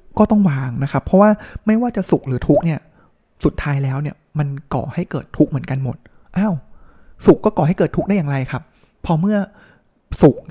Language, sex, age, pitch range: Thai, male, 20-39, 135-180 Hz